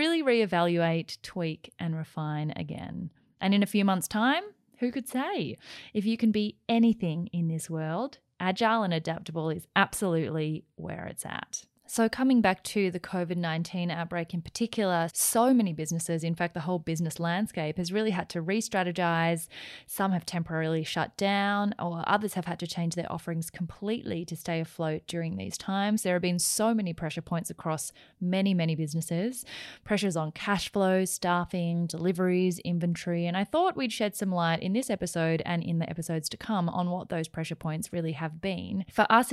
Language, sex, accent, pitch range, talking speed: English, female, Australian, 165-200 Hz, 180 wpm